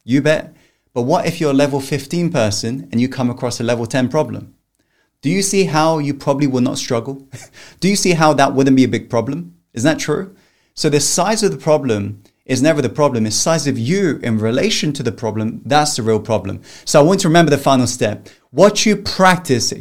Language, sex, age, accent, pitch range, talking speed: English, male, 30-49, British, 130-170 Hz, 225 wpm